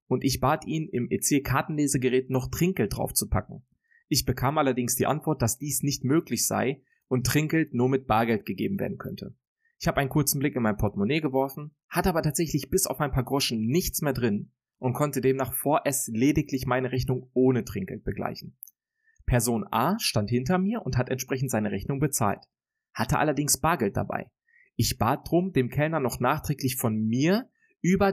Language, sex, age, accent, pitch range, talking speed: German, male, 30-49, German, 120-155 Hz, 180 wpm